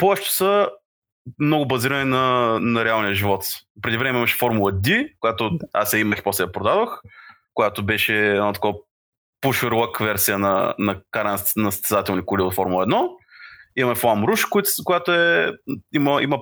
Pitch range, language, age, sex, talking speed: 105-140 Hz, Bulgarian, 20-39, male, 155 wpm